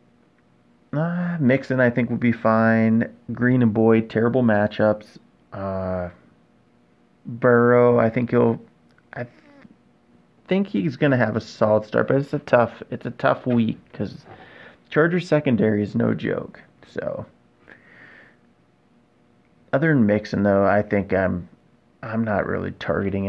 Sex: male